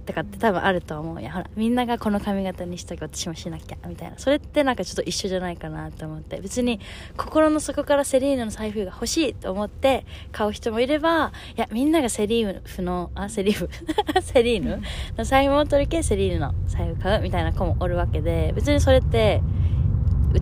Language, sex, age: Japanese, female, 20-39